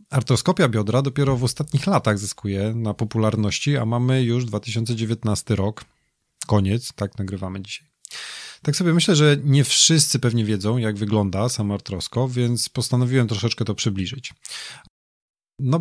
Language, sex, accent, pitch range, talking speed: Polish, male, native, 105-135 Hz, 135 wpm